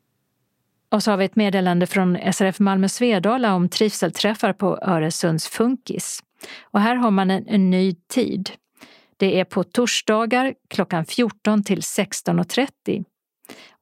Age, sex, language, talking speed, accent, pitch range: 40-59, female, Swedish, 135 wpm, native, 185-220 Hz